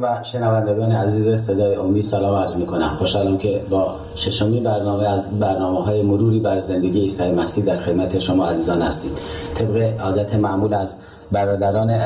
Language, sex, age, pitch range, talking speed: Persian, male, 40-59, 95-110 Hz, 150 wpm